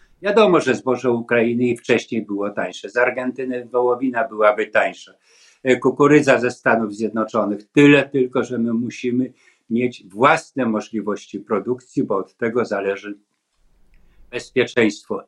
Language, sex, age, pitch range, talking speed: Polish, male, 50-69, 125-160 Hz, 120 wpm